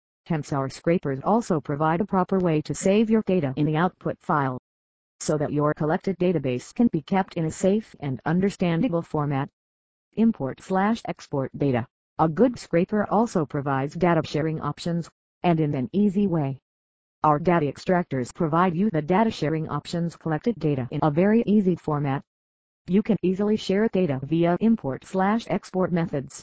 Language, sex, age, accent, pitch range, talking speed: English, female, 50-69, American, 145-185 Hz, 155 wpm